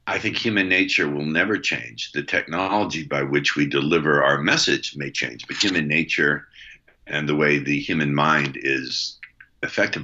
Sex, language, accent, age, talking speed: male, English, American, 60-79, 165 wpm